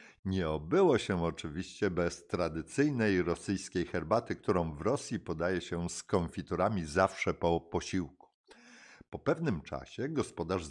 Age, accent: 50-69, native